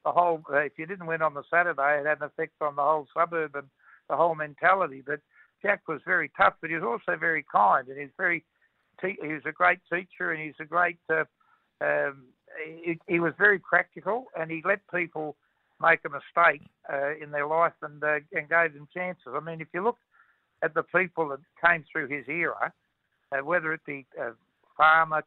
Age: 60-79